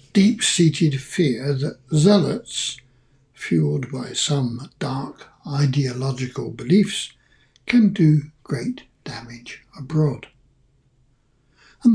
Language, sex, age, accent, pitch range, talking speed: English, male, 60-79, British, 135-175 Hz, 80 wpm